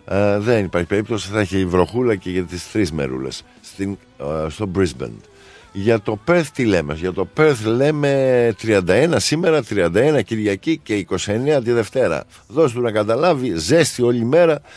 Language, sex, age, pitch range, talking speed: Greek, male, 50-69, 95-130 Hz, 160 wpm